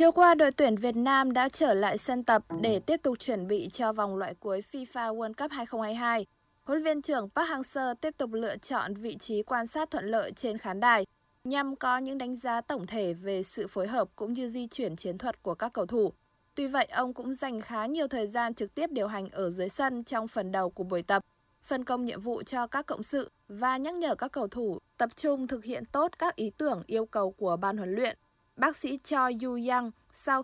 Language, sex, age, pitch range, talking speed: Vietnamese, female, 20-39, 210-265 Hz, 235 wpm